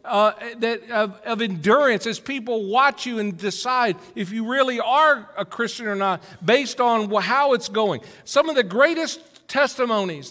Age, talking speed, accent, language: 50-69, 175 wpm, American, English